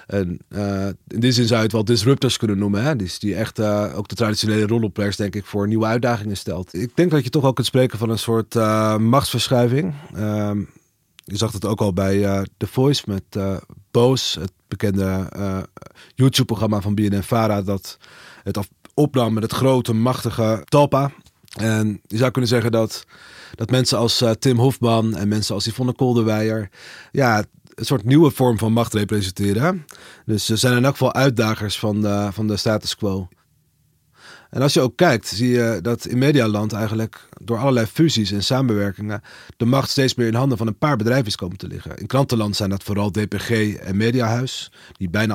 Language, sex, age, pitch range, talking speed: Dutch, male, 30-49, 105-125 Hz, 190 wpm